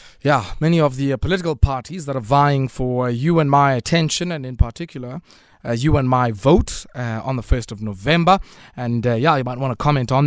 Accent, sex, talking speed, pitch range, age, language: South African, male, 230 wpm, 125-160 Hz, 20-39, English